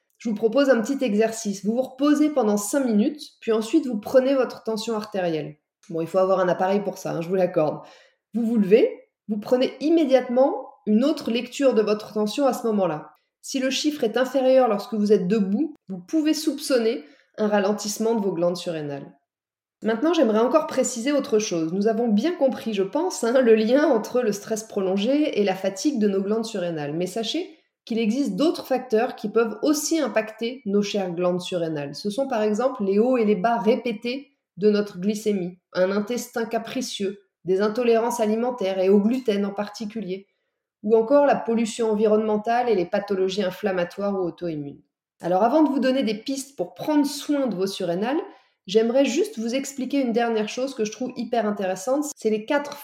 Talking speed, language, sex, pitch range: 190 wpm, French, female, 200-260 Hz